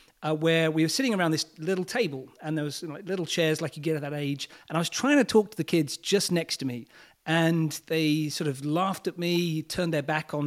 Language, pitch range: English, 155-190 Hz